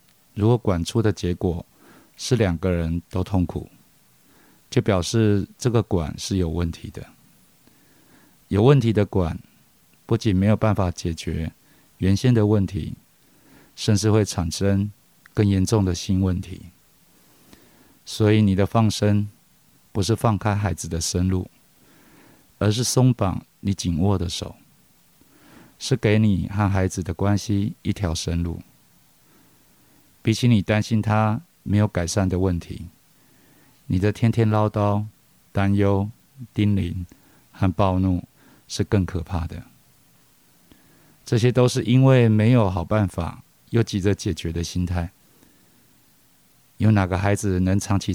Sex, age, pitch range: male, 50-69, 90-110 Hz